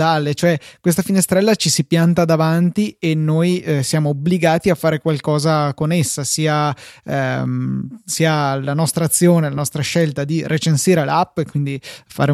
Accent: native